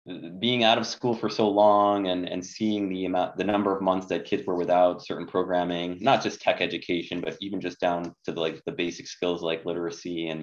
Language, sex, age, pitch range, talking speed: English, male, 20-39, 85-105 Hz, 225 wpm